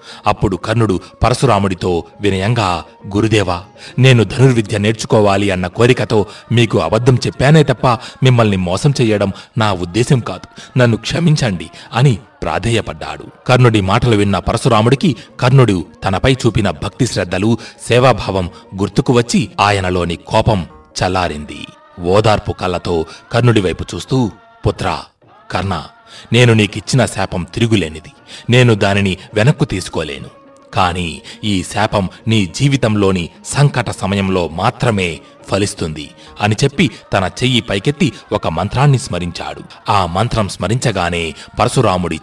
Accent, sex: native, male